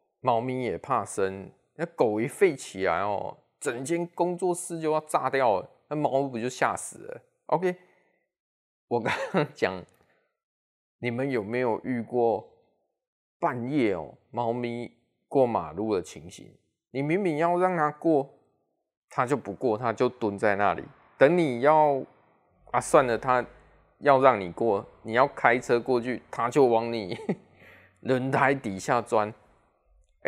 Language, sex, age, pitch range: Chinese, male, 20-39, 115-155 Hz